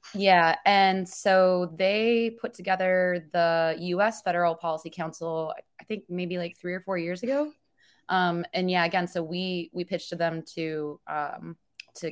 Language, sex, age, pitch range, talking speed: English, female, 20-39, 155-180 Hz, 165 wpm